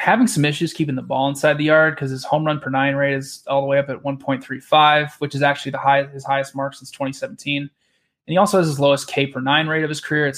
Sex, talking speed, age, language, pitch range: male, 295 wpm, 20-39, English, 135-155 Hz